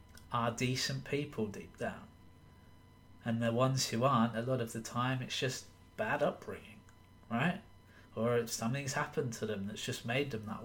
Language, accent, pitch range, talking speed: English, British, 100-130 Hz, 175 wpm